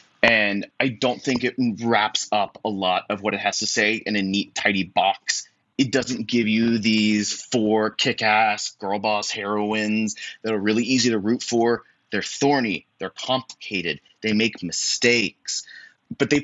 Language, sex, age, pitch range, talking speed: English, male, 30-49, 100-120 Hz, 170 wpm